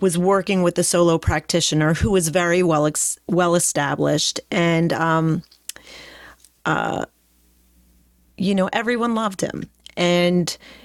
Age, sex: 40-59, female